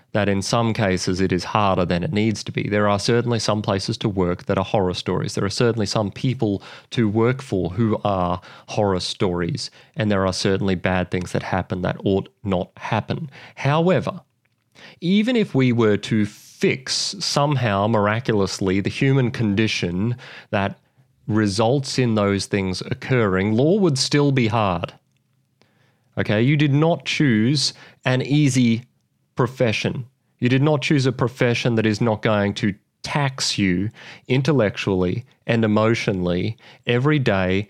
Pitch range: 105-140 Hz